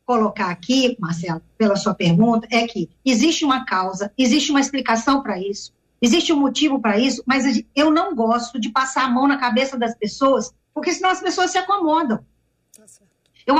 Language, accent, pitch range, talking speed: Portuguese, Brazilian, 235-300 Hz, 175 wpm